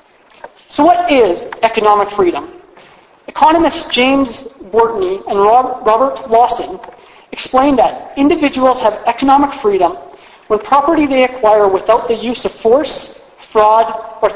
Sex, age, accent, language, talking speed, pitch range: male, 40-59, American, English, 115 wpm, 210-260 Hz